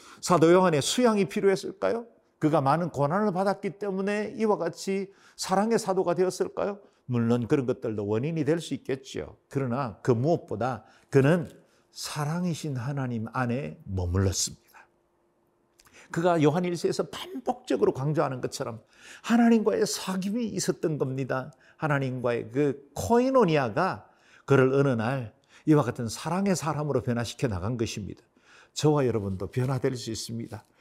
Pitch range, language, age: 115-165 Hz, Korean, 50-69